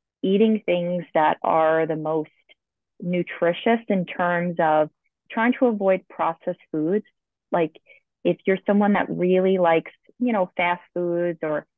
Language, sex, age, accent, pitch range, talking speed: English, female, 30-49, American, 155-185 Hz, 140 wpm